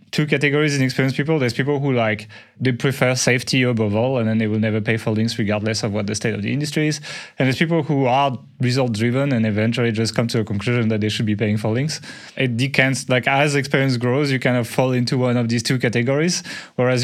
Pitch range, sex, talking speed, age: 115-140 Hz, male, 245 wpm, 20-39